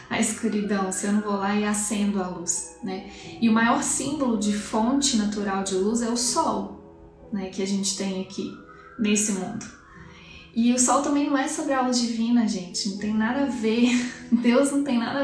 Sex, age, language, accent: female, 10-29, Portuguese, Brazilian